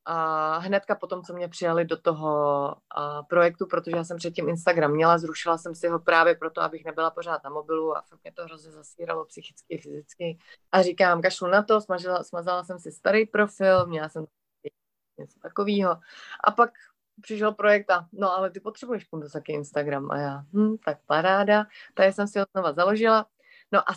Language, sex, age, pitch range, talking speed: Slovak, female, 30-49, 155-200 Hz, 190 wpm